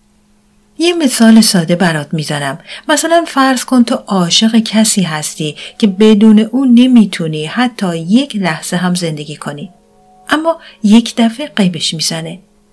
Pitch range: 170-230 Hz